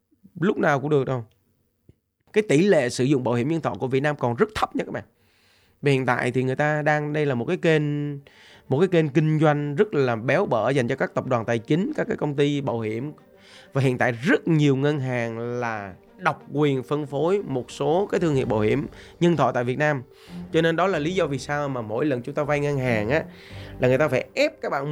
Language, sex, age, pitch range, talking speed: Vietnamese, male, 20-39, 125-165 Hz, 255 wpm